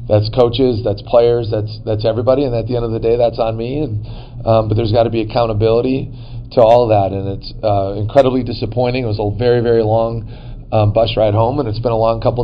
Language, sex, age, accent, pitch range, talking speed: English, male, 40-59, American, 115-130 Hz, 235 wpm